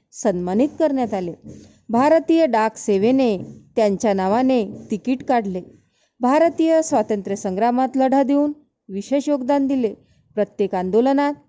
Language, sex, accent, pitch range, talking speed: Marathi, female, native, 205-270 Hz, 100 wpm